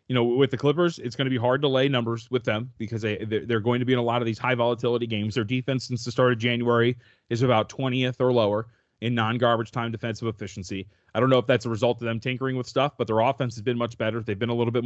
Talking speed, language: 275 wpm, English